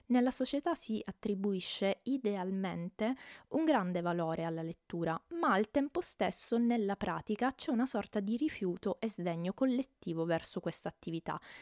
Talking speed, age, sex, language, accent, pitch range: 140 wpm, 20-39, female, Italian, native, 170-220 Hz